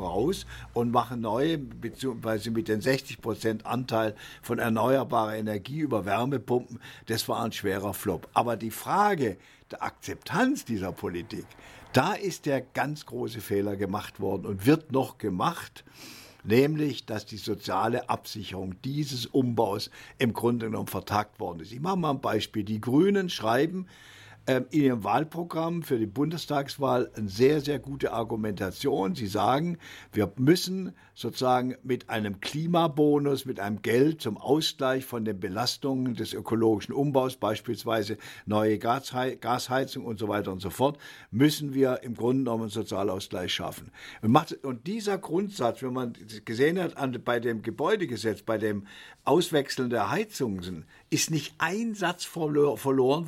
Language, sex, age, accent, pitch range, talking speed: German, male, 50-69, German, 110-140 Hz, 145 wpm